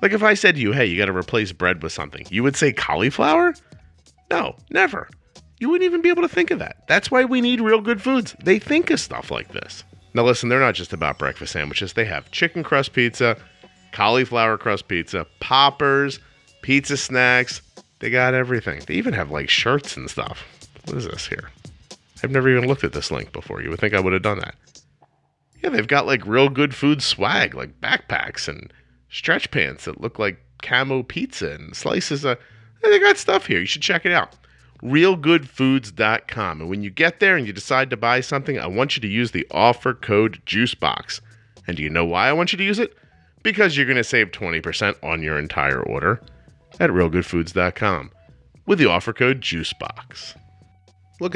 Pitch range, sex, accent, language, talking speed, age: 90-140 Hz, male, American, English, 195 wpm, 40-59